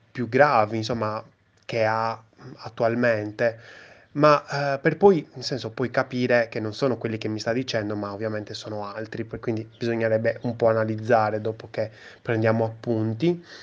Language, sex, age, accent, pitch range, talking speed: Italian, male, 20-39, native, 110-135 Hz, 155 wpm